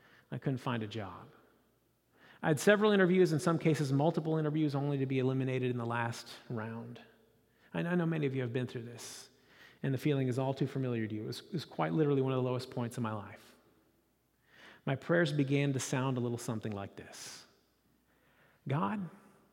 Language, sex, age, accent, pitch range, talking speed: English, male, 40-59, American, 130-215 Hz, 205 wpm